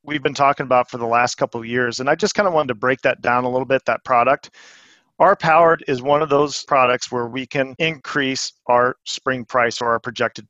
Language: English